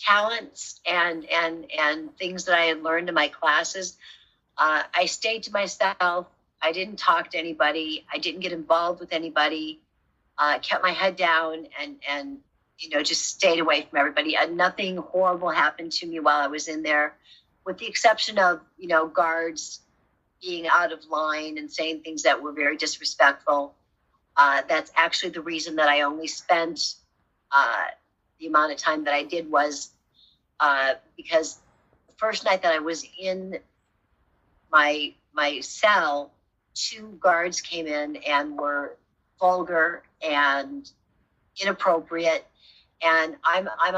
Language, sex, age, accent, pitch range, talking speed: English, female, 50-69, American, 150-185 Hz, 155 wpm